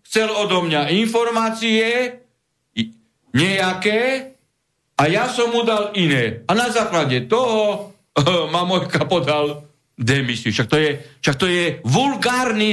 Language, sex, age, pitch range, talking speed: Slovak, male, 60-79, 145-205 Hz, 115 wpm